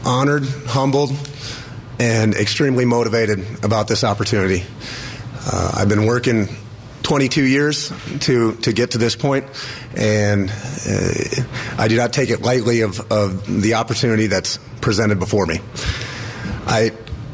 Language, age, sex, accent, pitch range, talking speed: English, 30-49, male, American, 115-135 Hz, 130 wpm